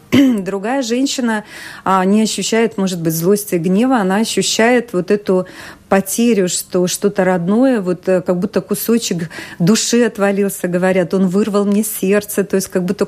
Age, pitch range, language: 30-49, 185-215 Hz, Russian